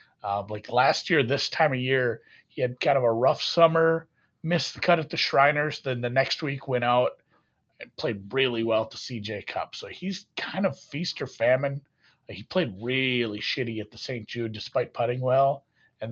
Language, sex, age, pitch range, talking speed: English, male, 40-59, 115-155 Hz, 205 wpm